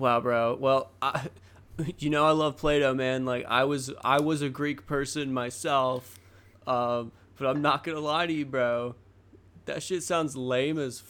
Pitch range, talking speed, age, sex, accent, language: 105-155 Hz, 175 wpm, 20-39, male, American, English